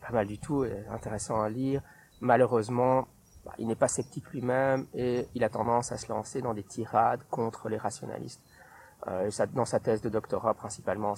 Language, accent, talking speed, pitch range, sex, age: French, French, 175 wpm, 110-140 Hz, male, 30-49